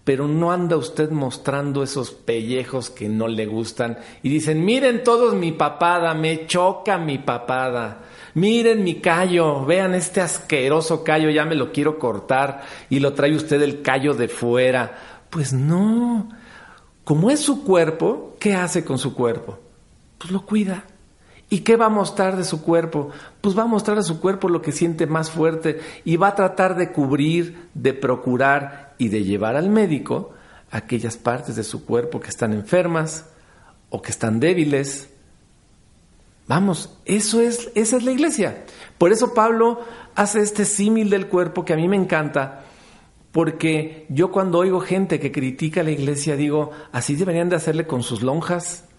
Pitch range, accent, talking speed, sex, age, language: 135-185 Hz, Mexican, 165 wpm, male, 50-69, Spanish